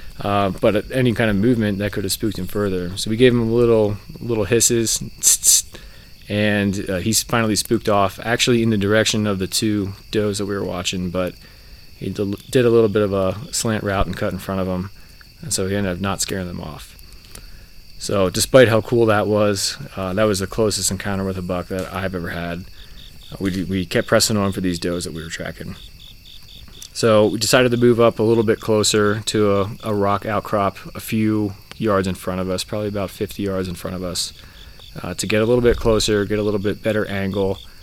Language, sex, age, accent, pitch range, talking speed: English, male, 20-39, American, 95-110 Hz, 215 wpm